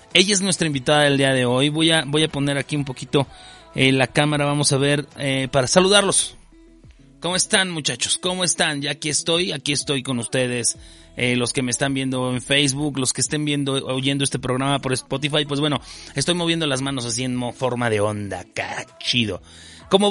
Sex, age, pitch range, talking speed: male, 30-49, 135-175 Hz, 195 wpm